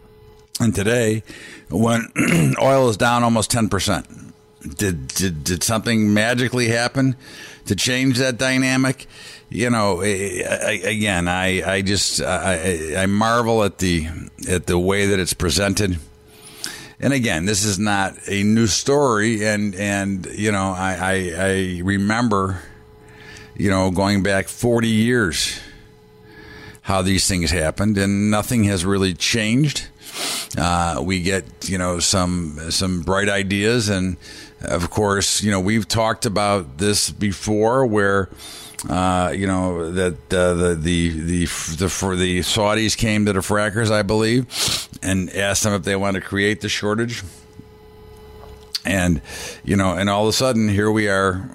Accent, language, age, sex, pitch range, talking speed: American, English, 50-69, male, 90-110 Hz, 150 wpm